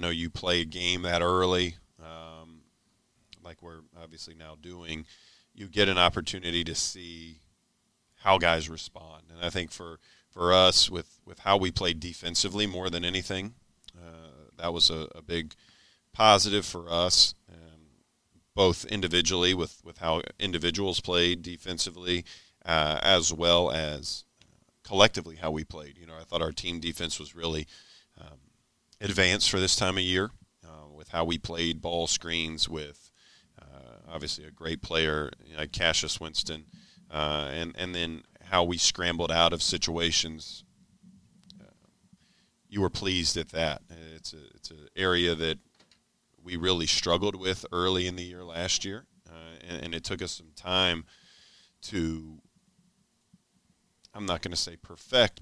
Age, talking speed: 40-59, 155 wpm